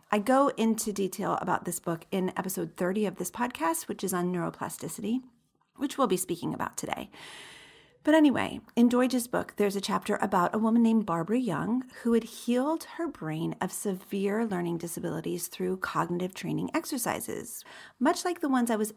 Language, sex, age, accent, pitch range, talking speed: English, female, 40-59, American, 190-245 Hz, 175 wpm